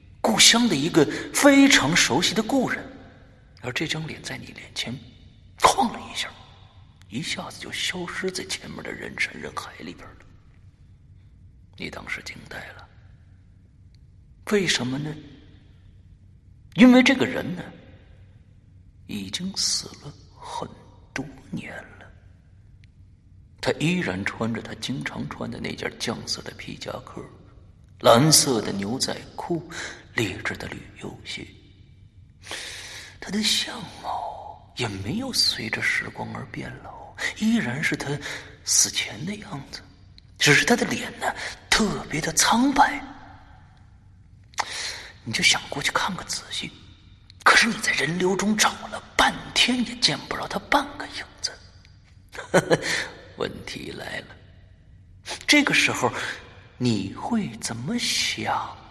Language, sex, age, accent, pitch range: Chinese, male, 50-69, native, 95-155 Hz